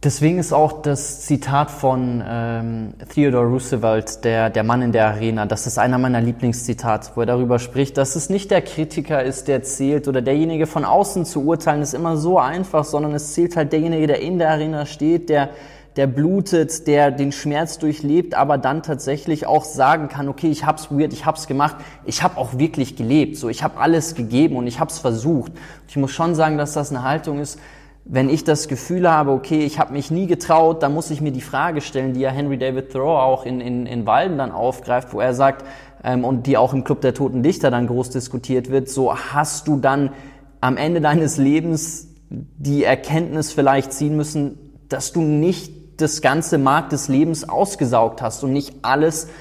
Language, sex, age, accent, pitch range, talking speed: German, male, 20-39, German, 130-155 Hz, 205 wpm